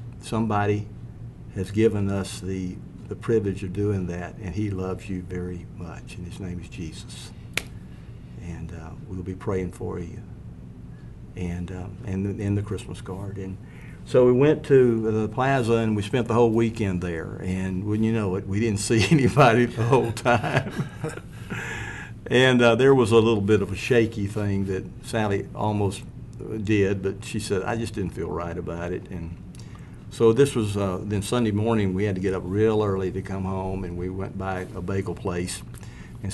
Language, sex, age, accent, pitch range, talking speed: English, male, 50-69, American, 95-115 Hz, 185 wpm